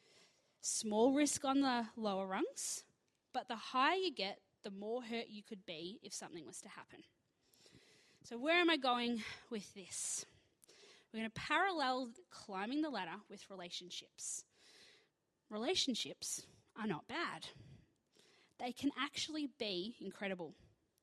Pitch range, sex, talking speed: 210-285 Hz, female, 135 wpm